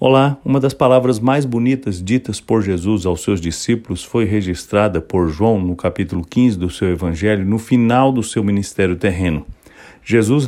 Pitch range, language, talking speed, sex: 95-125 Hz, English, 165 wpm, male